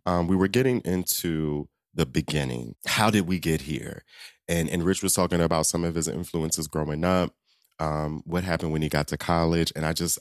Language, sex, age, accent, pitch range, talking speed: English, male, 30-49, American, 80-120 Hz, 205 wpm